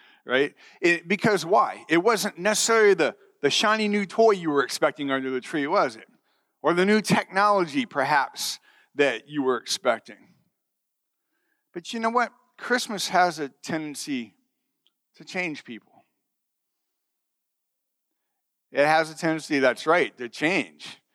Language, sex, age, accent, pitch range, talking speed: English, male, 40-59, American, 160-240 Hz, 135 wpm